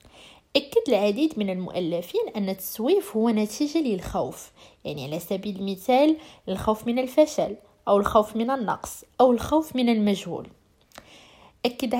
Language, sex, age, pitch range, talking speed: Arabic, female, 20-39, 195-270 Hz, 125 wpm